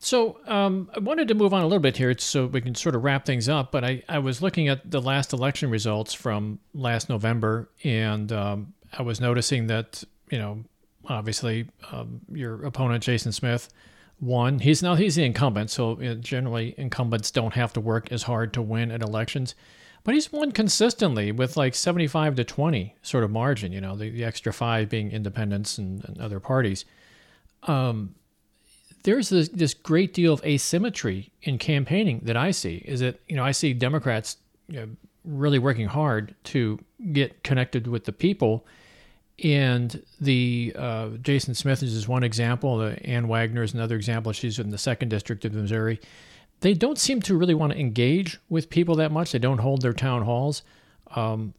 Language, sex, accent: English, male, American